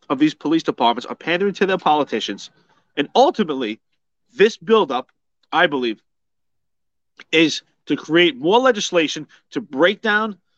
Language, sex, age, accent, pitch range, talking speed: English, male, 30-49, American, 145-195 Hz, 130 wpm